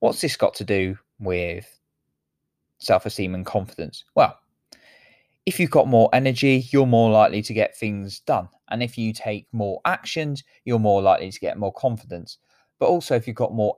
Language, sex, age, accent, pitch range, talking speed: English, male, 20-39, British, 100-125 Hz, 180 wpm